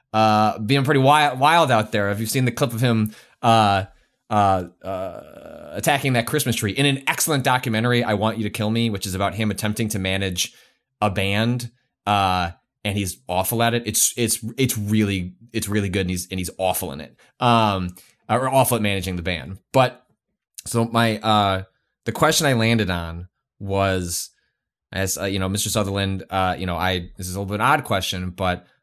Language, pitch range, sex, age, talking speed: English, 95-120 Hz, male, 20-39, 200 wpm